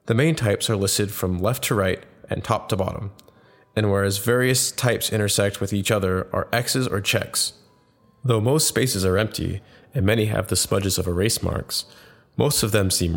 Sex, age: male, 20-39